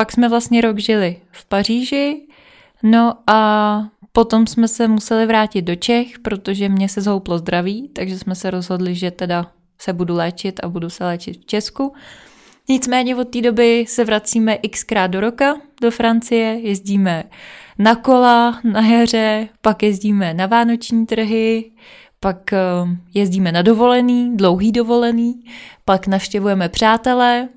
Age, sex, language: 20-39, female, Czech